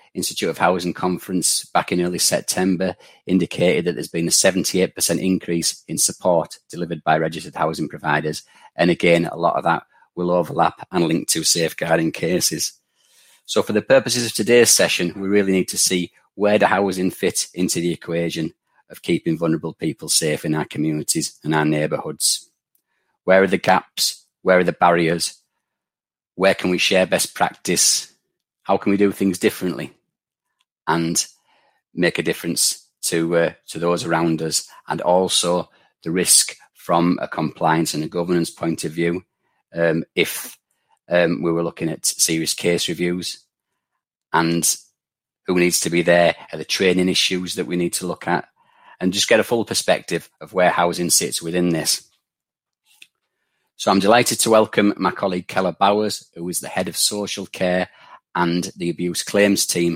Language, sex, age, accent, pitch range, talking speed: English, male, 30-49, British, 85-95 Hz, 165 wpm